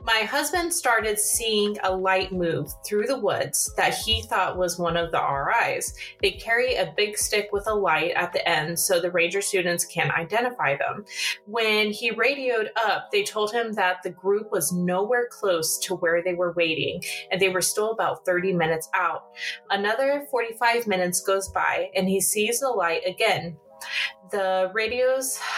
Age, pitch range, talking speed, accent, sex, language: 20-39, 180-220 Hz, 175 wpm, American, female, English